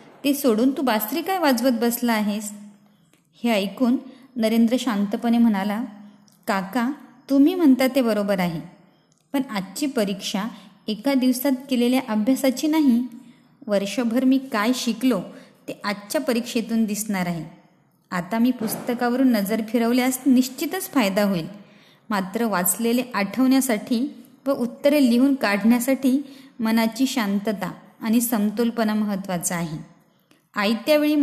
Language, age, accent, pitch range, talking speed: Marathi, 20-39, native, 205-255 Hz, 110 wpm